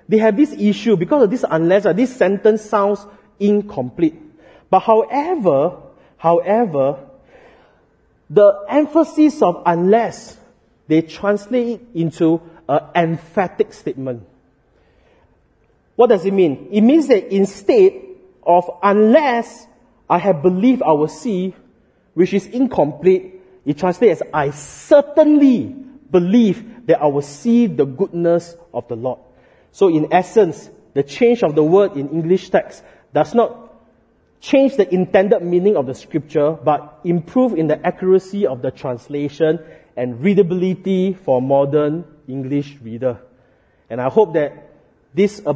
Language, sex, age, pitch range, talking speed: English, male, 30-49, 150-205 Hz, 130 wpm